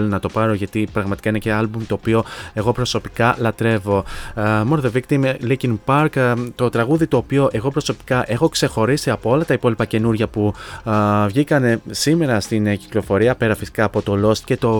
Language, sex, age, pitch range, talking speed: Greek, male, 20-39, 105-130 Hz, 185 wpm